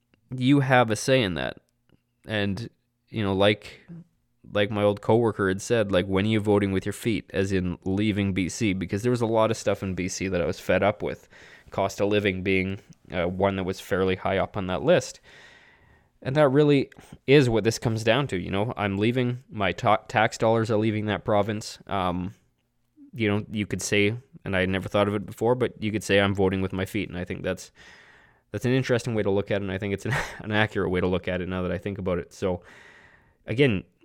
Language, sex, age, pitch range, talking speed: English, male, 20-39, 95-115 Hz, 235 wpm